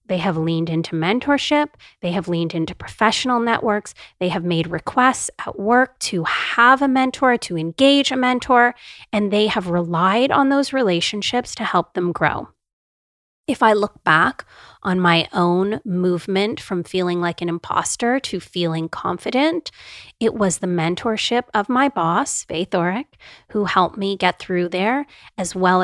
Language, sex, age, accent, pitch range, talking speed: English, female, 30-49, American, 175-230 Hz, 160 wpm